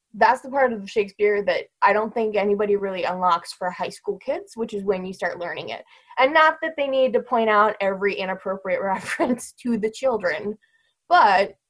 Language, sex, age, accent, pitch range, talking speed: English, female, 10-29, American, 185-230 Hz, 195 wpm